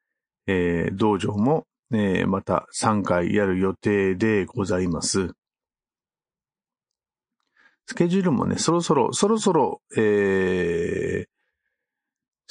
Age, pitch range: 50-69, 100-130 Hz